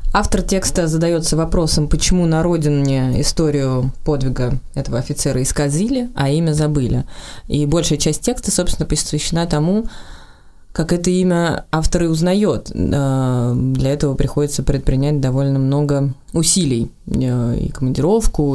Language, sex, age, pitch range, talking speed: Russian, female, 20-39, 130-160 Hz, 115 wpm